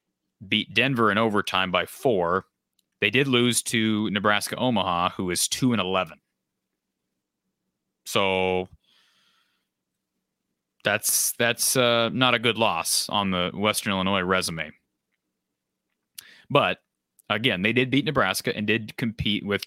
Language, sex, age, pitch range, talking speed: English, male, 30-49, 100-125 Hz, 120 wpm